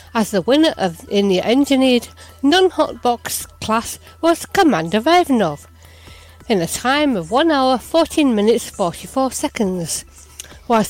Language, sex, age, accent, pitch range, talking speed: English, female, 60-79, British, 195-275 Hz, 140 wpm